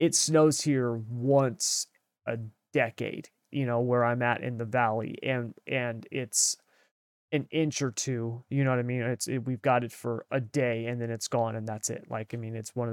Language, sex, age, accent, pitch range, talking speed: English, male, 30-49, American, 120-145 Hz, 220 wpm